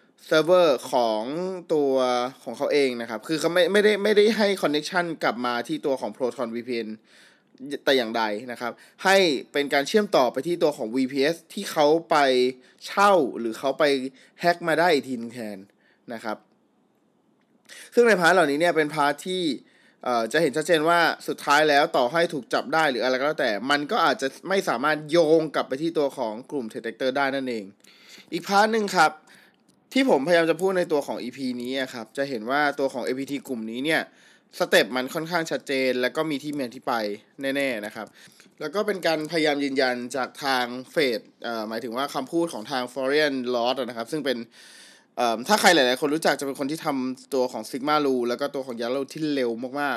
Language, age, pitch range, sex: Thai, 20-39, 125-165 Hz, male